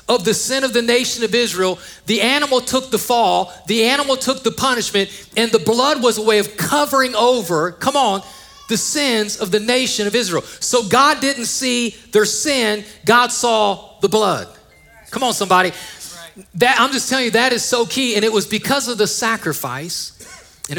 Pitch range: 210-250 Hz